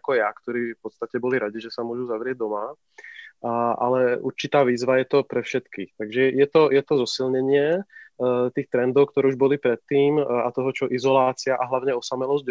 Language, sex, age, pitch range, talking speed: Slovak, male, 20-39, 120-135 Hz, 180 wpm